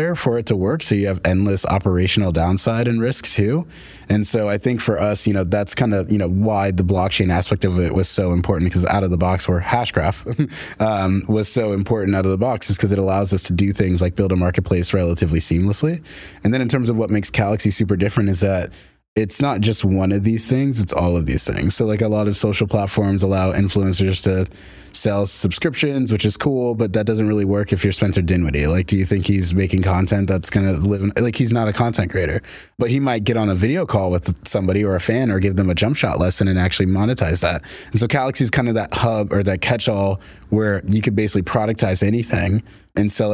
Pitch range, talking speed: 95-110 Hz, 240 wpm